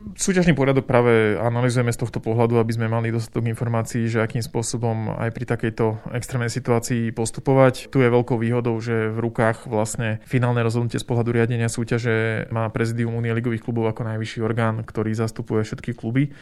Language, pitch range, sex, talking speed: Slovak, 115-130 Hz, male, 170 wpm